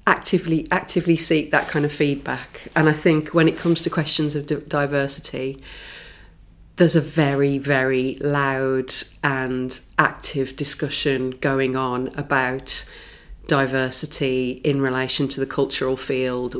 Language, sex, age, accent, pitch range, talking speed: English, female, 30-49, British, 130-155 Hz, 130 wpm